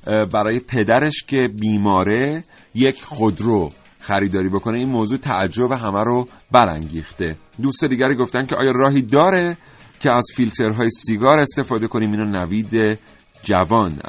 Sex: male